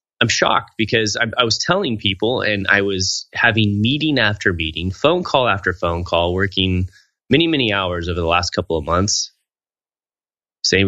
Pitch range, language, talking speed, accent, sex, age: 90-115 Hz, English, 170 wpm, American, male, 20-39